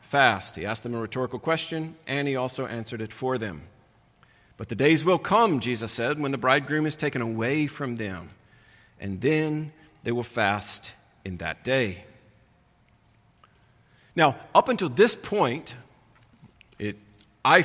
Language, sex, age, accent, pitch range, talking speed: English, male, 40-59, American, 110-150 Hz, 150 wpm